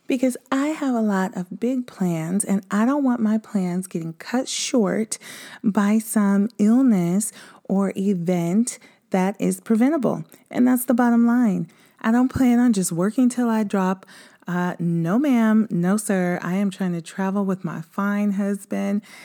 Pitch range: 180-220 Hz